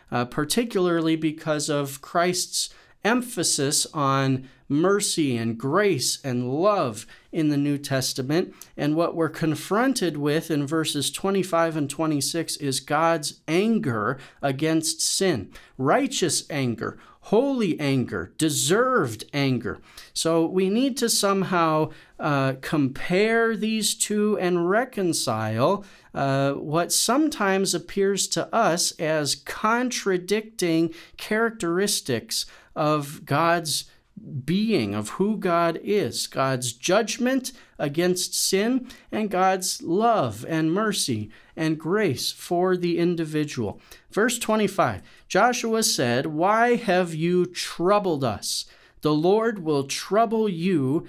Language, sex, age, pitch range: English, male, 40-59, 145-195 Hz